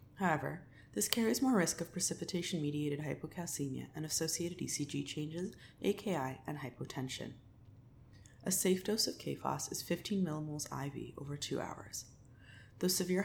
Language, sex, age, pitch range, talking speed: English, female, 20-39, 120-185 Hz, 130 wpm